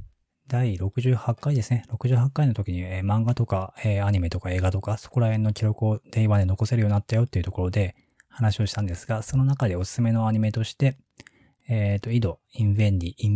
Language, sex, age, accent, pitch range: Japanese, male, 20-39, native, 90-115 Hz